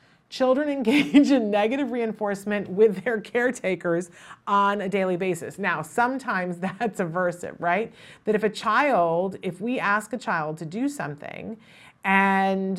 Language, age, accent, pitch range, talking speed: English, 40-59, American, 170-225 Hz, 140 wpm